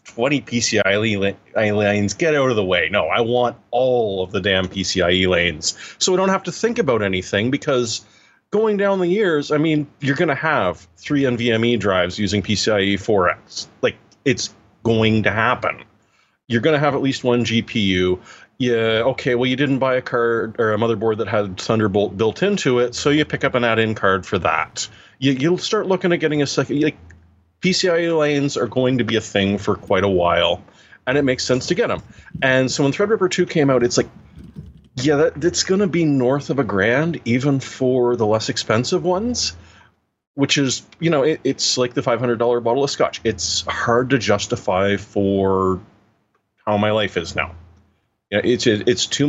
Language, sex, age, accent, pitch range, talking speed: English, male, 30-49, American, 100-140 Hz, 195 wpm